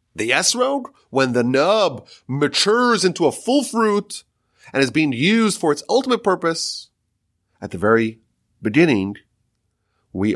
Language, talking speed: English, 135 wpm